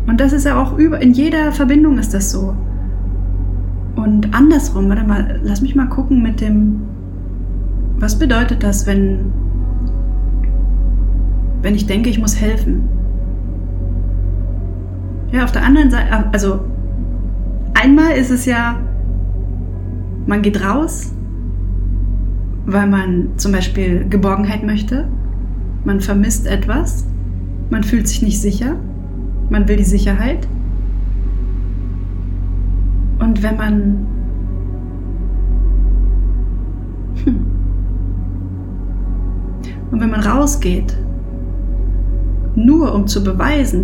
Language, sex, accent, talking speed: German, female, German, 100 wpm